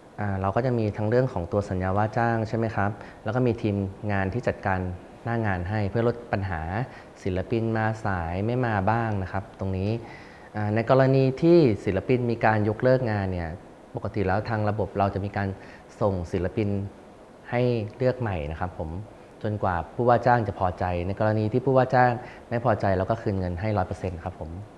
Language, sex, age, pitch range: Thai, male, 30-49, 95-115 Hz